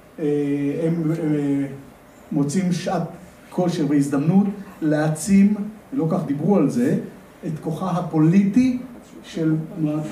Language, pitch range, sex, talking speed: Hebrew, 150-195 Hz, male, 95 wpm